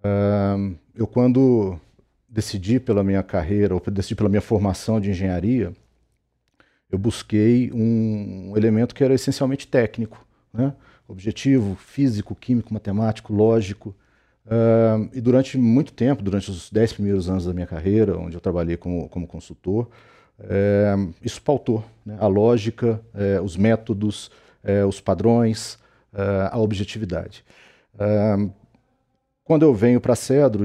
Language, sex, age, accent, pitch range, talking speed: Portuguese, male, 40-59, Brazilian, 100-125 Hz, 135 wpm